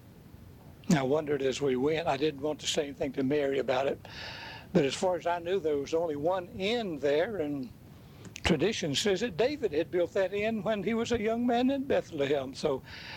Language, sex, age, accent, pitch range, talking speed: English, male, 60-79, American, 140-190 Hz, 205 wpm